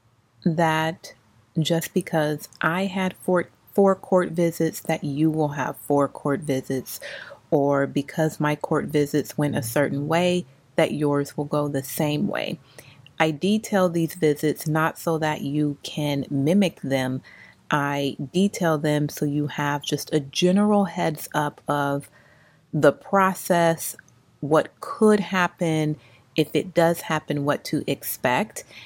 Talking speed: 140 wpm